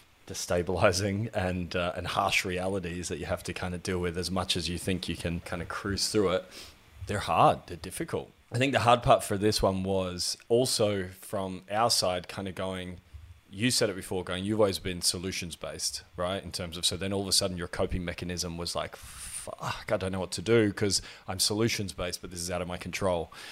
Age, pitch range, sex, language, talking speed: 20-39, 90-105 Hz, male, English, 225 wpm